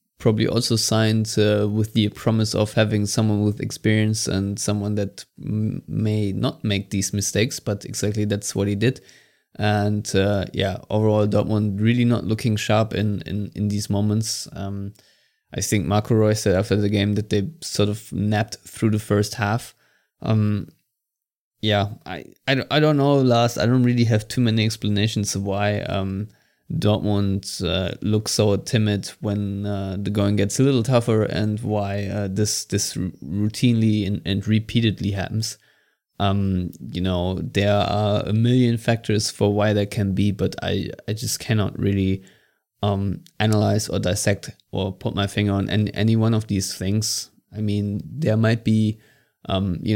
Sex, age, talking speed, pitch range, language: male, 20-39, 170 wpm, 100-110 Hz, English